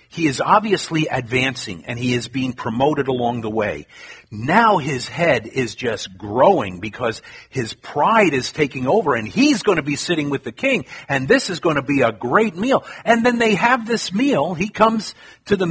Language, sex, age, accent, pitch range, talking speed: Italian, male, 50-69, American, 135-220 Hz, 200 wpm